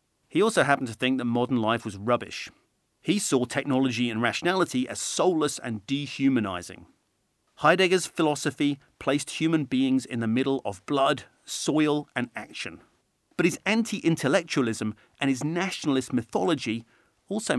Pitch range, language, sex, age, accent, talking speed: 115-145 Hz, English, male, 40-59, British, 135 wpm